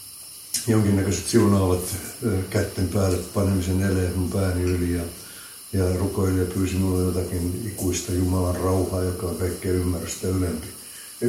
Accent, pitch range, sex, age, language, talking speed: native, 90-105 Hz, male, 60-79, Finnish, 120 wpm